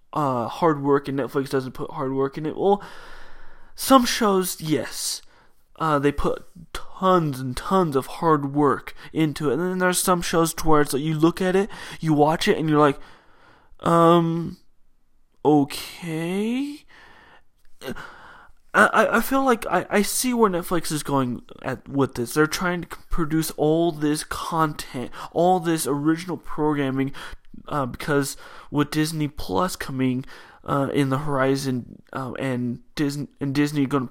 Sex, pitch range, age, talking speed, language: male, 140-180 Hz, 20-39, 155 wpm, English